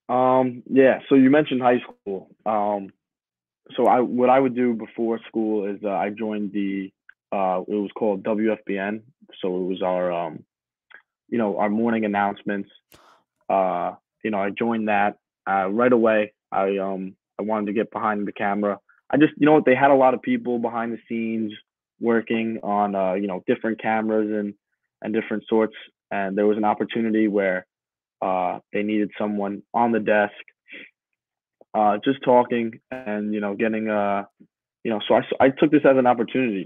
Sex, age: male, 20-39